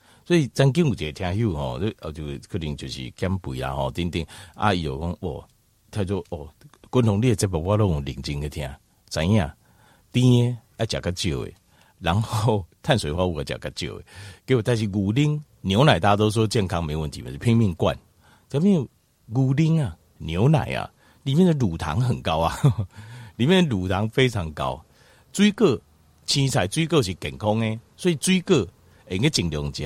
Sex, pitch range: male, 85-135 Hz